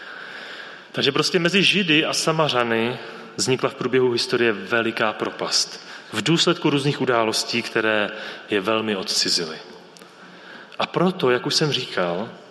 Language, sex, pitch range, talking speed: Czech, male, 115-145 Hz, 125 wpm